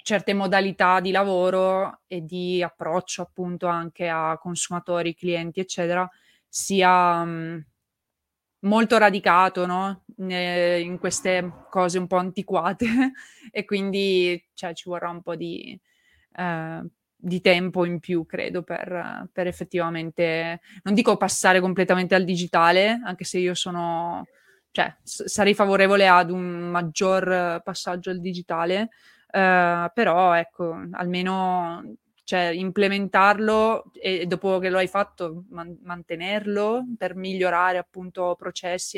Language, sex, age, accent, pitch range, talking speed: Italian, female, 20-39, native, 175-195 Hz, 115 wpm